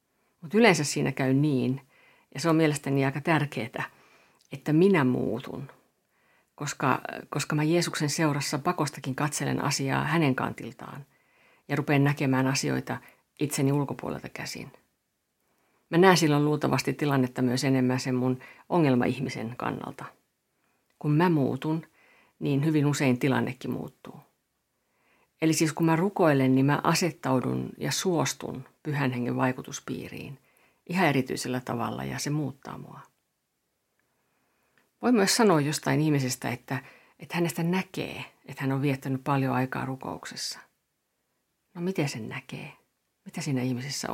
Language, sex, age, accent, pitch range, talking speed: Finnish, female, 50-69, native, 130-165 Hz, 125 wpm